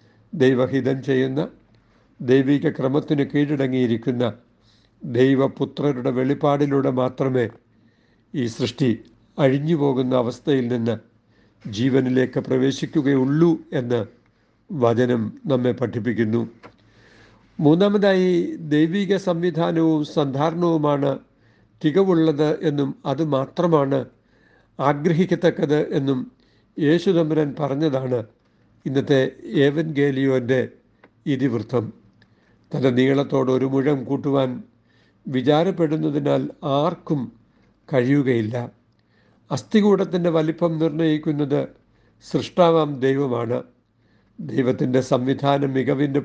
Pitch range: 125-155 Hz